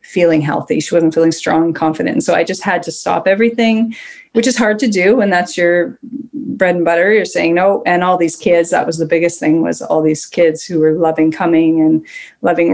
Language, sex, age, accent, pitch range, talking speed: English, female, 30-49, American, 165-210 Hz, 230 wpm